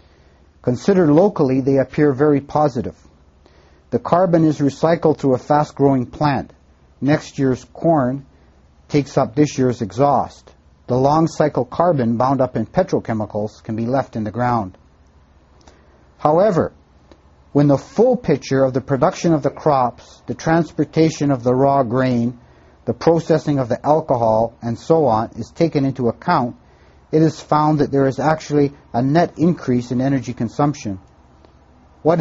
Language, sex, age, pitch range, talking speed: English, male, 50-69, 110-150 Hz, 145 wpm